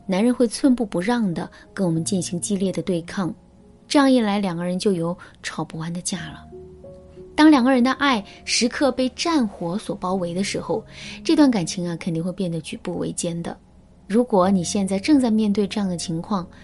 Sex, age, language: female, 20-39, Chinese